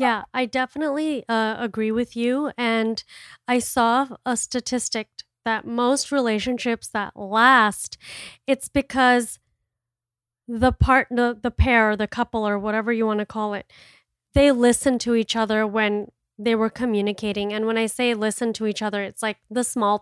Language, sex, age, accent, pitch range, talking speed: English, female, 30-49, American, 215-255 Hz, 160 wpm